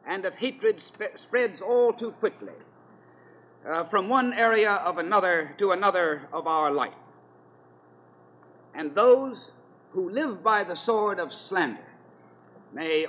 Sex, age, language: male, 60-79, English